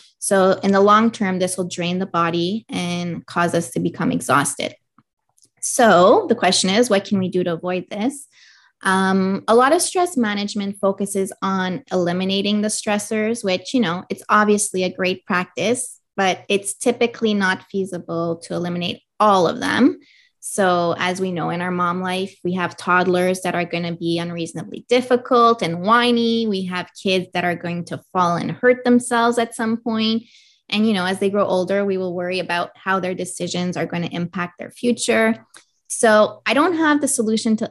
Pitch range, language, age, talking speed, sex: 180-225 Hz, English, 20-39, 185 wpm, female